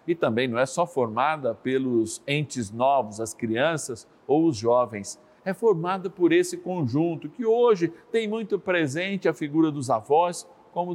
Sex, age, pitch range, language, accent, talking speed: male, 50-69, 135-200 Hz, Portuguese, Brazilian, 160 wpm